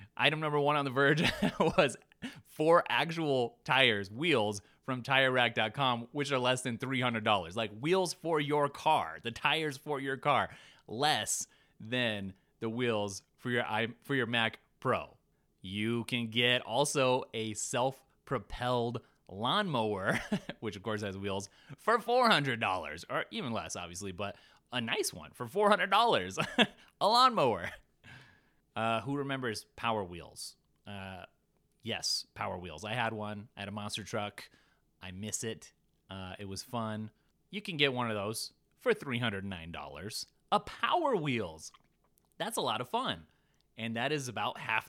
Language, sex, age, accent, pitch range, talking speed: English, male, 30-49, American, 105-140 Hz, 155 wpm